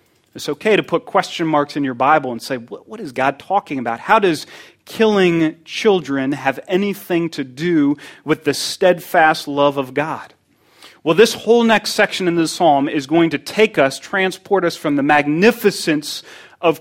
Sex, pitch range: male, 145-190 Hz